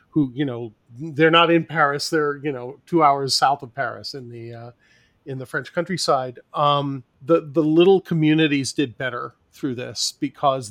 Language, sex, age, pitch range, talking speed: English, male, 40-59, 135-160 Hz, 180 wpm